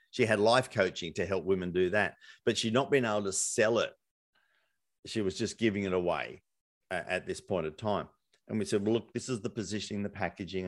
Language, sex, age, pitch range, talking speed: English, male, 50-69, 95-120 Hz, 220 wpm